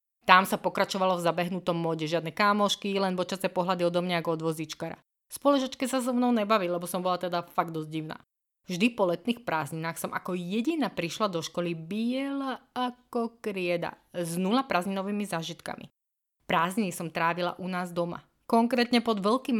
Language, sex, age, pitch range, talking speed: Slovak, female, 20-39, 170-220 Hz, 160 wpm